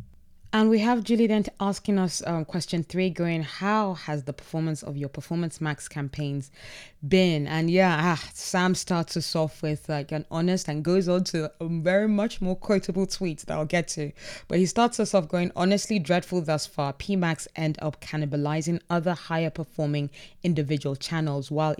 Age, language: 20-39, English